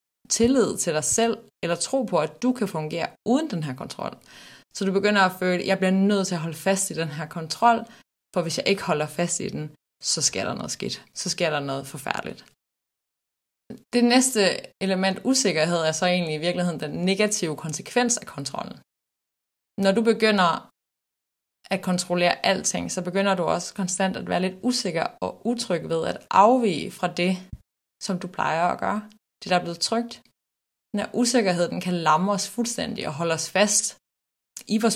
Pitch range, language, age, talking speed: 165-210 Hz, Danish, 20-39, 185 wpm